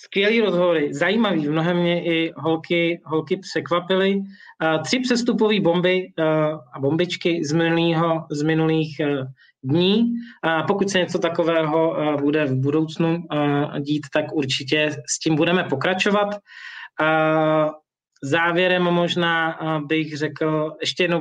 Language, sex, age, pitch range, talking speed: Czech, male, 20-39, 150-175 Hz, 110 wpm